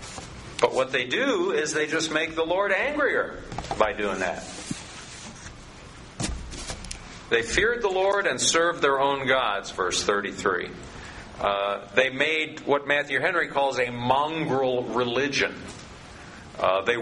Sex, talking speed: male, 130 wpm